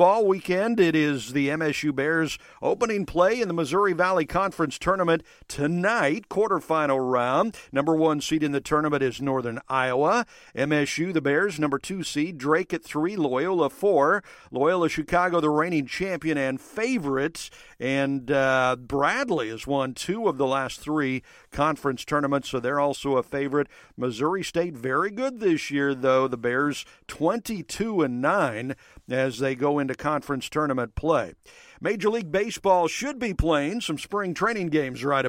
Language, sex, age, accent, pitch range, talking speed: English, male, 50-69, American, 135-175 Hz, 155 wpm